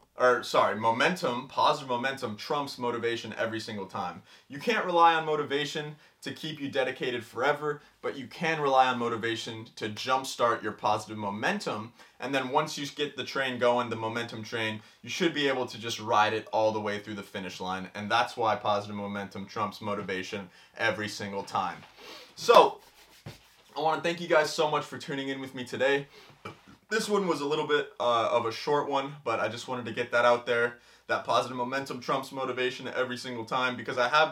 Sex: male